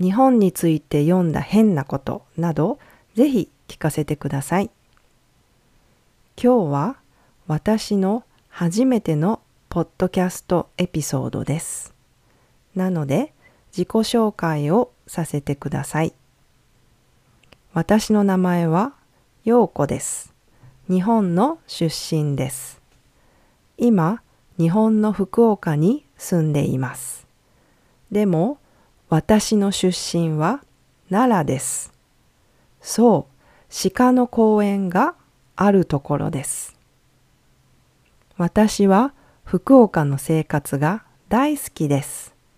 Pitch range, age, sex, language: 150-215 Hz, 40-59, female, English